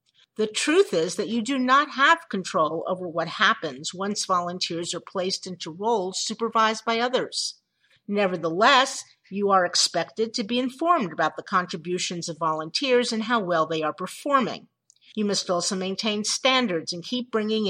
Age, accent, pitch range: 50-69, American, 180-235 Hz